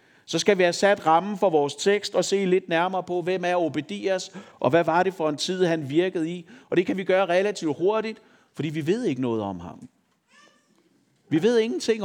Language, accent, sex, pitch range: Danish, native, male, 175-225 Hz